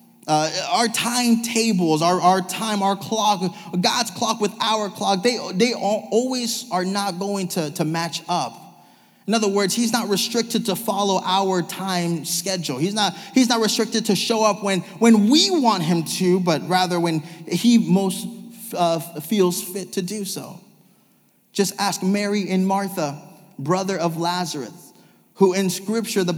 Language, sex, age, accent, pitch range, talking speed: English, male, 20-39, American, 180-225 Hz, 160 wpm